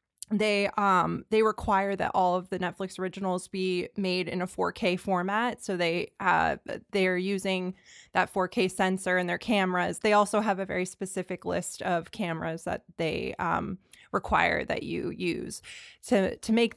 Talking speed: 170 wpm